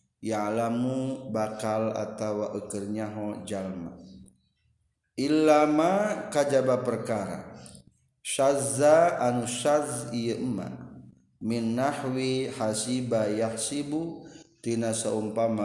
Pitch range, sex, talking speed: 110-145 Hz, male, 80 wpm